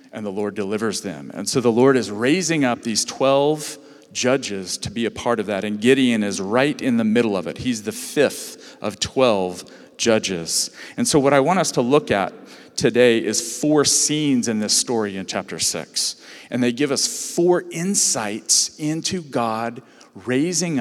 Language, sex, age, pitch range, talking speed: English, male, 40-59, 115-145 Hz, 185 wpm